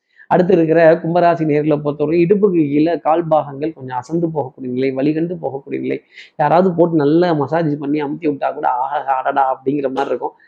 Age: 30-49